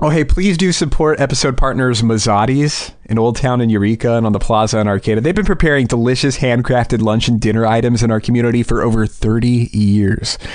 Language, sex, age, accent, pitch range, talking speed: English, male, 30-49, American, 110-135 Hz, 200 wpm